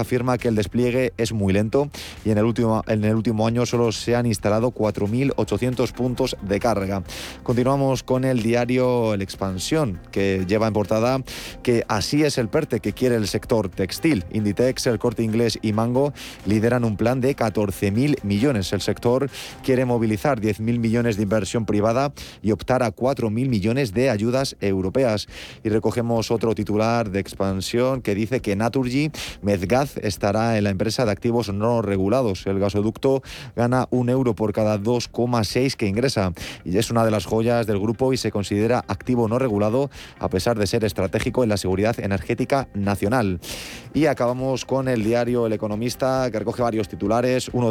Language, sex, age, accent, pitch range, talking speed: Spanish, male, 30-49, Spanish, 105-125 Hz, 170 wpm